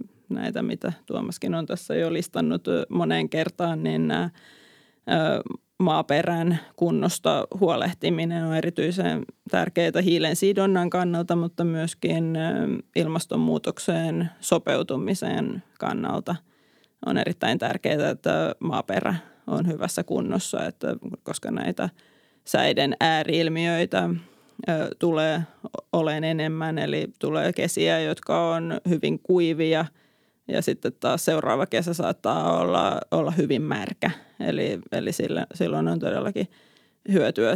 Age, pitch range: 20-39, 160-185 Hz